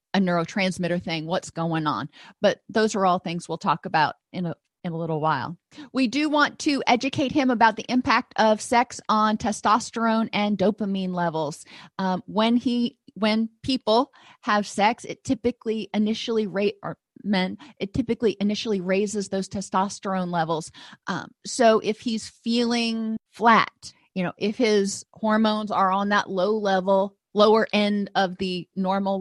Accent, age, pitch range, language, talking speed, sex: American, 30-49, 185-230 Hz, English, 155 wpm, female